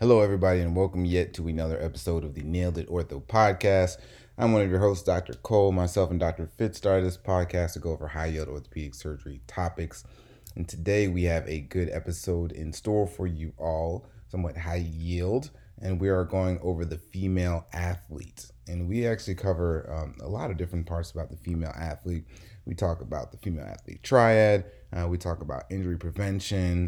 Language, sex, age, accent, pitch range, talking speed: English, male, 30-49, American, 80-95 Hz, 190 wpm